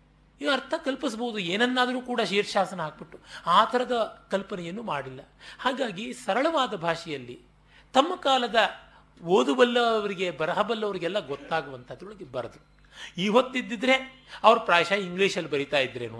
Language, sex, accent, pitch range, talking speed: Kannada, male, native, 155-235 Hz, 100 wpm